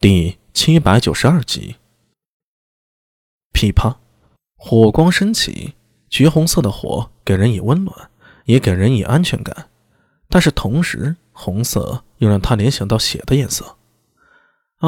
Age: 20-39